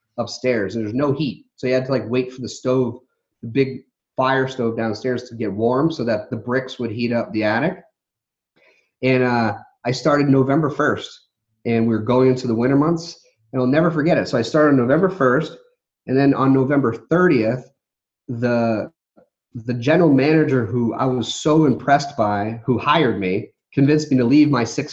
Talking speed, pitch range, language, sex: 190 wpm, 115-155 Hz, English, male